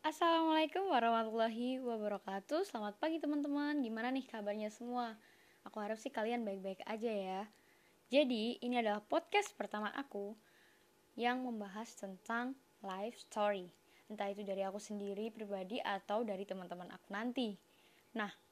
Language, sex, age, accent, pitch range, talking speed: Indonesian, female, 10-29, native, 200-255 Hz, 130 wpm